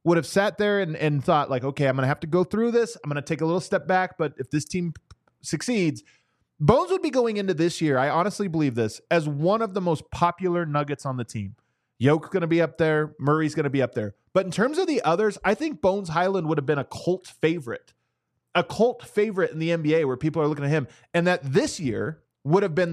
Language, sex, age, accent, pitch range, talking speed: English, male, 20-39, American, 140-185 Hz, 255 wpm